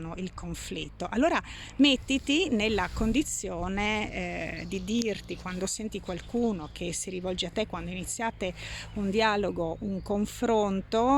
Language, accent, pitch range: Italian, native, 180-230 Hz